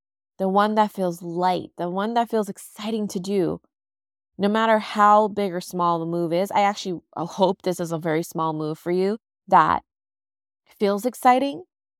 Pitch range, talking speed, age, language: 155-205 Hz, 175 wpm, 20-39, English